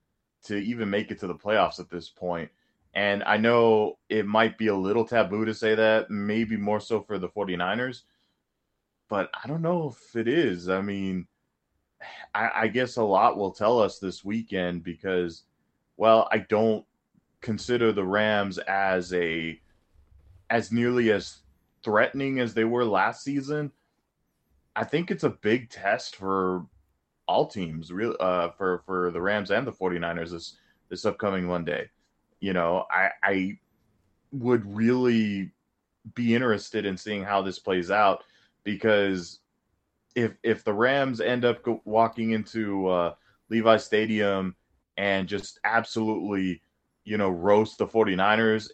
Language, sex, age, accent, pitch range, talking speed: English, male, 20-39, American, 95-115 Hz, 150 wpm